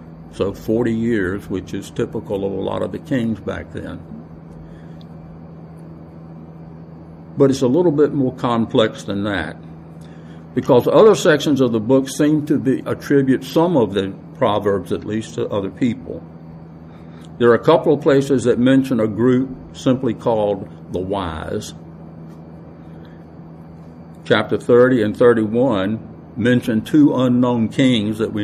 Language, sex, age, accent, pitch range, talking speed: English, male, 60-79, American, 80-120 Hz, 135 wpm